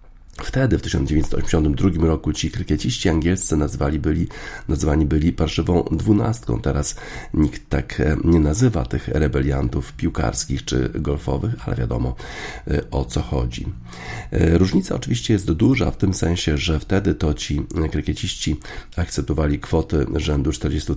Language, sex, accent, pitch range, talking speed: Polish, male, native, 70-85 Hz, 125 wpm